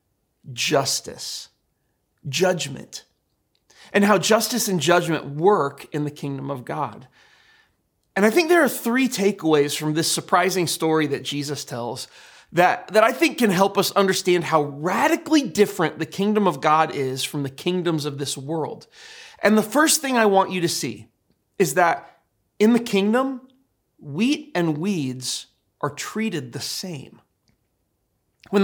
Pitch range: 155-225 Hz